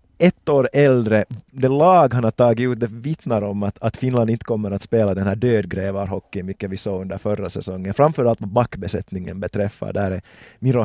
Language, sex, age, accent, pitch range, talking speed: Swedish, male, 30-49, Finnish, 100-125 Hz, 195 wpm